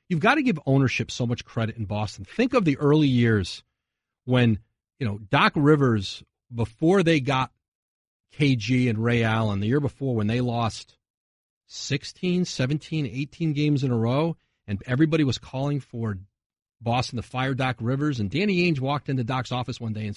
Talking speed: 180 wpm